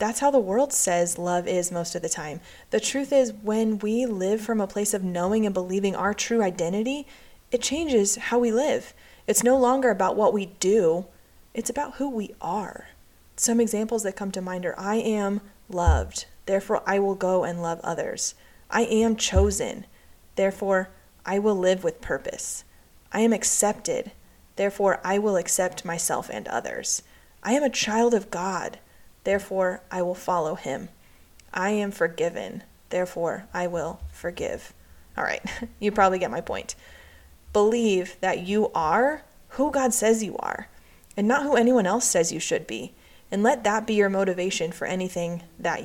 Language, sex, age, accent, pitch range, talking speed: English, female, 30-49, American, 180-225 Hz, 175 wpm